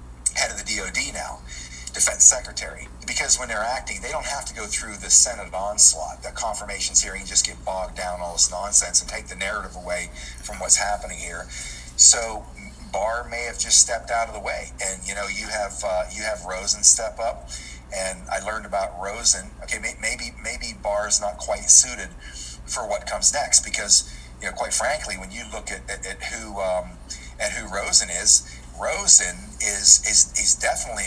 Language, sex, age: Thai, male, 40-59